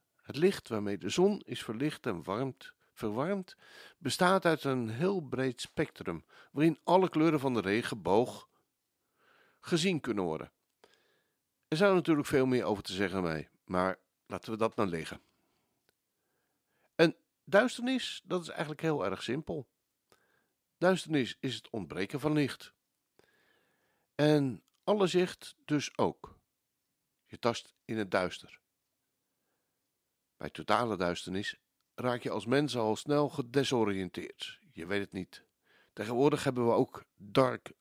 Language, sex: Dutch, male